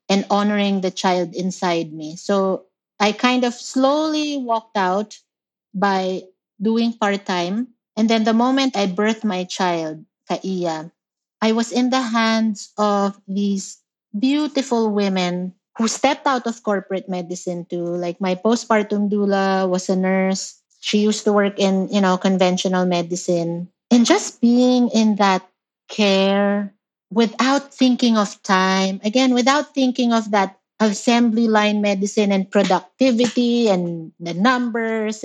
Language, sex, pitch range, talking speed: English, female, 190-235 Hz, 135 wpm